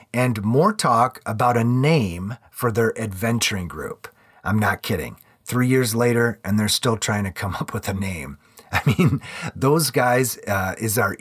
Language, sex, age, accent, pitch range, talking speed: English, male, 30-49, American, 105-140 Hz, 175 wpm